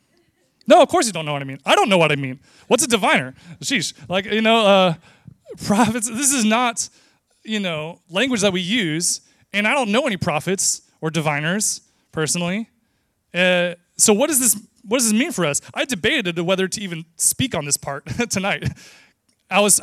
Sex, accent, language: male, American, English